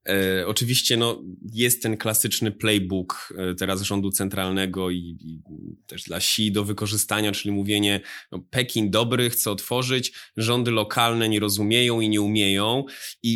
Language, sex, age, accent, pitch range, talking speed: Polish, male, 20-39, native, 105-135 Hz, 145 wpm